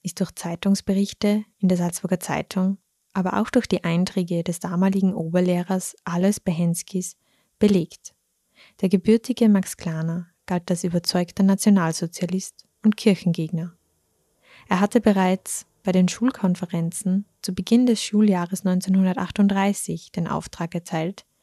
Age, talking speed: 20-39, 120 wpm